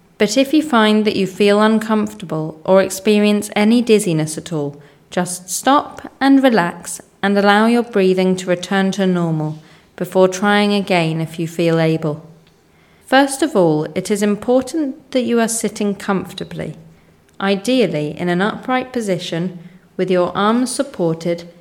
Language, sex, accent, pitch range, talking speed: English, female, British, 170-230 Hz, 145 wpm